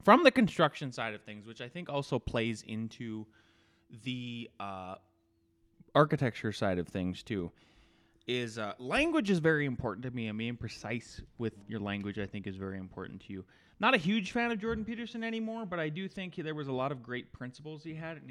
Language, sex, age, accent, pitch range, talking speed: English, male, 20-39, American, 110-155 Hz, 205 wpm